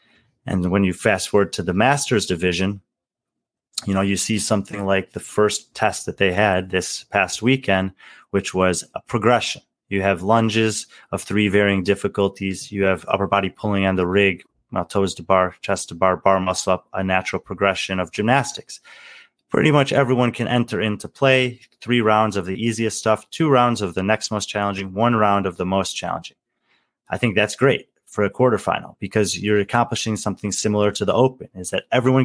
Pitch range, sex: 95-115 Hz, male